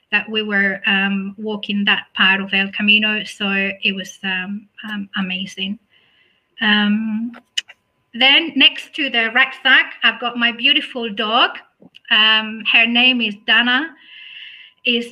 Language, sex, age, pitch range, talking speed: English, female, 30-49, 205-245 Hz, 130 wpm